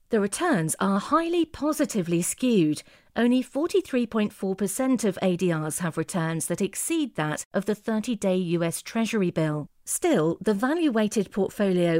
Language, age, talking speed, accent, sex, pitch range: English, 40-59, 135 wpm, British, female, 175-230 Hz